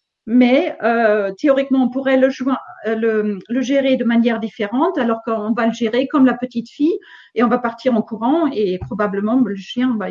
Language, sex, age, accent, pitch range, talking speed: French, female, 40-59, French, 225-270 Hz, 195 wpm